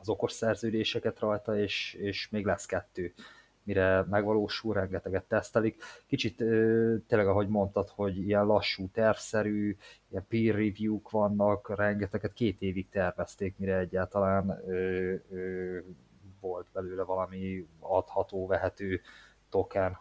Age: 20-39